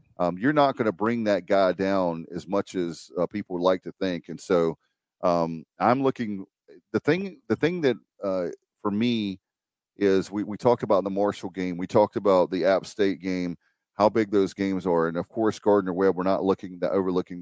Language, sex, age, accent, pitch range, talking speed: English, male, 40-59, American, 95-125 Hz, 205 wpm